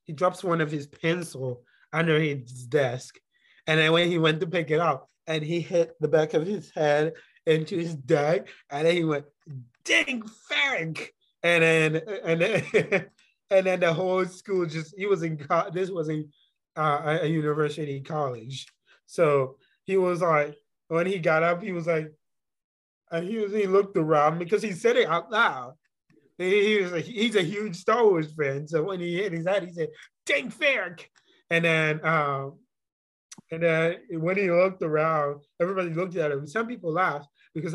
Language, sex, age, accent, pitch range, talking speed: English, male, 20-39, American, 150-185 Hz, 180 wpm